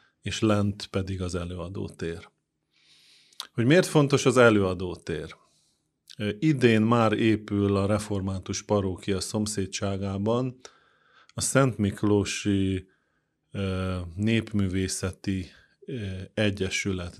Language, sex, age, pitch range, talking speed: Hungarian, male, 30-49, 95-110 Hz, 75 wpm